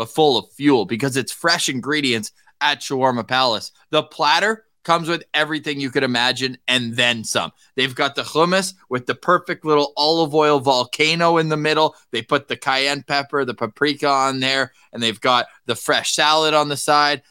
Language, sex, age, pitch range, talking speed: English, male, 20-39, 130-160 Hz, 185 wpm